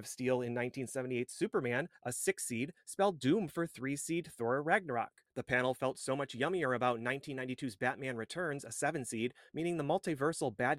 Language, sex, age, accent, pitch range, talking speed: English, male, 30-49, American, 125-160 Hz, 180 wpm